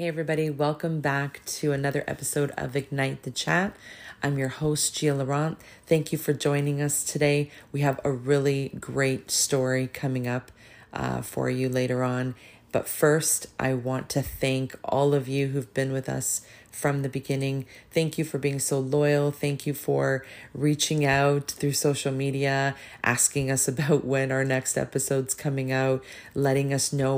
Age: 30-49